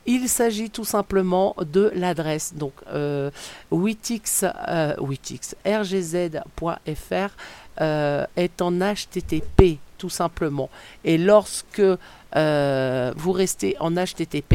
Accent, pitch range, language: French, 160-185 Hz, French